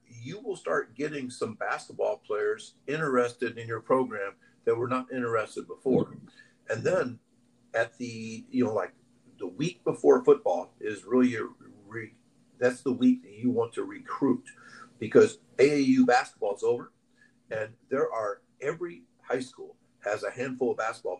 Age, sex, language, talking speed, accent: 50-69, male, English, 150 wpm, American